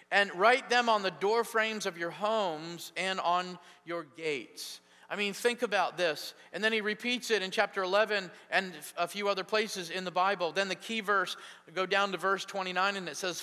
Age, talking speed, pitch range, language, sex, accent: 40-59, 210 wpm, 175-220 Hz, English, male, American